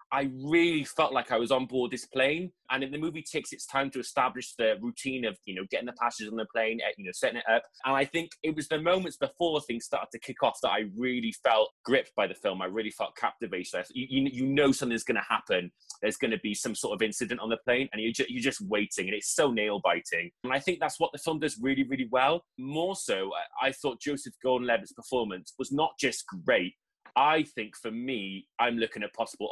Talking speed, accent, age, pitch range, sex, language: 240 wpm, British, 20-39, 115-150 Hz, male, English